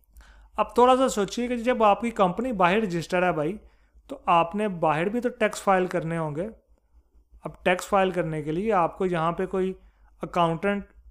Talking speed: 175 wpm